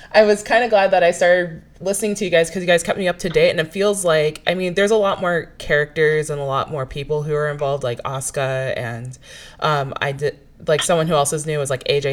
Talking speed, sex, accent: 265 wpm, female, American